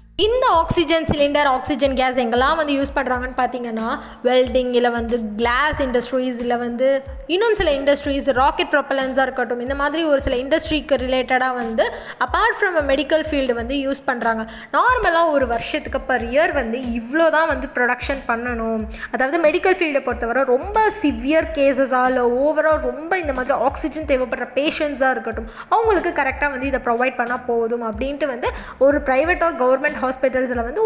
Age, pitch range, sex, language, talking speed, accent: 20-39, 255-315 Hz, female, Tamil, 150 wpm, native